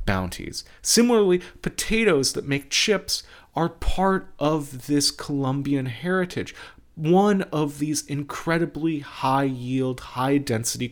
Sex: male